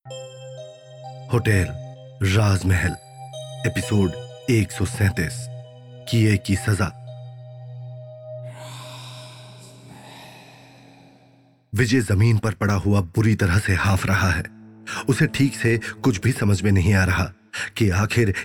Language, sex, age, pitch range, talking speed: Hindi, male, 40-59, 100-120 Hz, 105 wpm